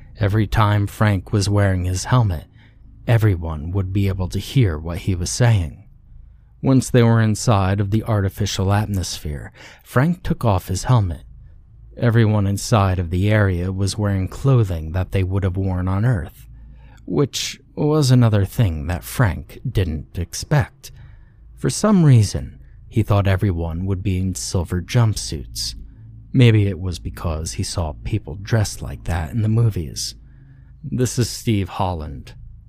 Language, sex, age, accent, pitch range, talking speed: English, male, 30-49, American, 90-115 Hz, 150 wpm